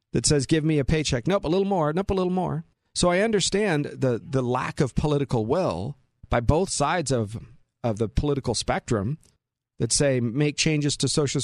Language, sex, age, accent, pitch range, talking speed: English, male, 40-59, American, 120-165 Hz, 195 wpm